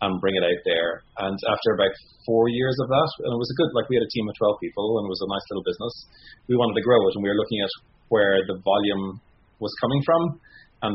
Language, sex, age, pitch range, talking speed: English, male, 30-49, 95-110 Hz, 270 wpm